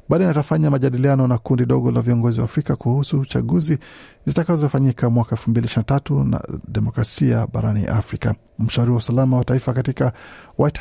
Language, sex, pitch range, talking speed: Swahili, male, 115-140 Hz, 145 wpm